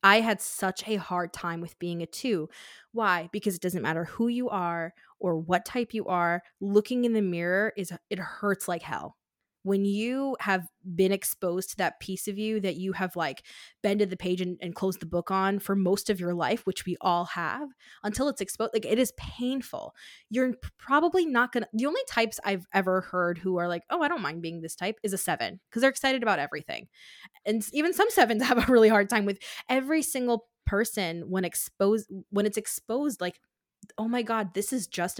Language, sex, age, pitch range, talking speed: English, female, 20-39, 180-225 Hz, 215 wpm